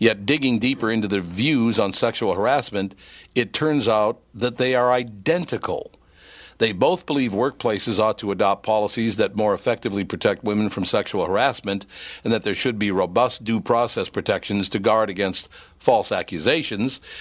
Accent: American